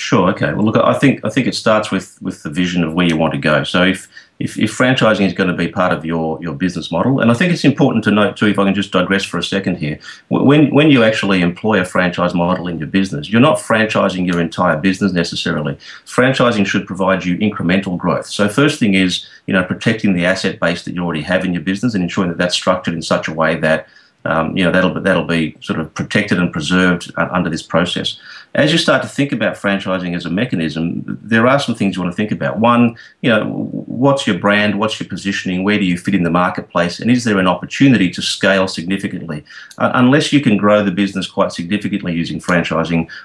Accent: Australian